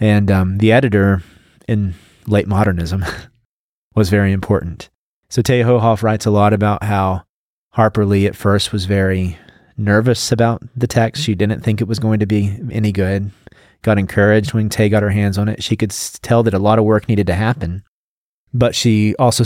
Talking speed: 190 wpm